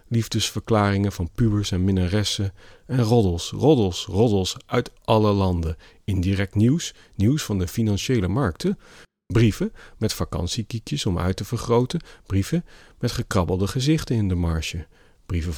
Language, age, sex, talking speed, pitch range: Dutch, 40-59, male, 130 wpm, 90-115 Hz